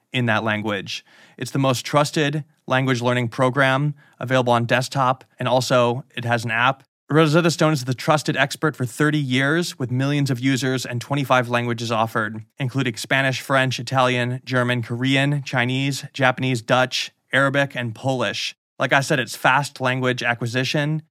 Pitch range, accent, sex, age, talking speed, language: 120-140 Hz, American, male, 20-39, 155 wpm, English